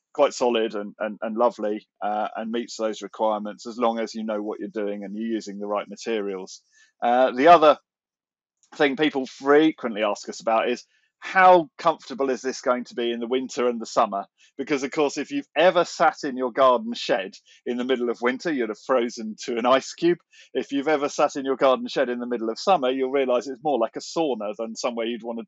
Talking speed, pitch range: 225 wpm, 110-140 Hz